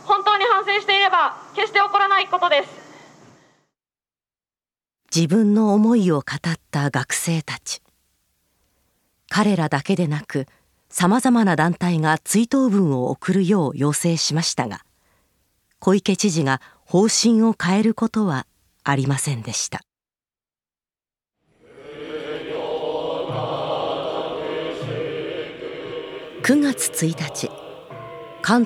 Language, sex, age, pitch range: Japanese, female, 40-59, 150-225 Hz